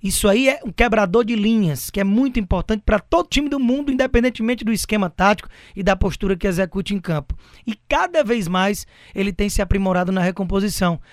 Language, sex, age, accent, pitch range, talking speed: Portuguese, male, 20-39, Brazilian, 185-240 Hz, 200 wpm